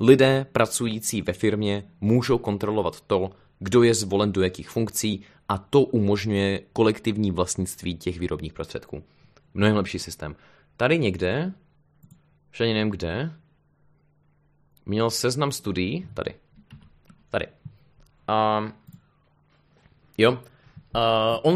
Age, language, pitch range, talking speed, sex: 20-39, Czech, 95-135 Hz, 105 wpm, male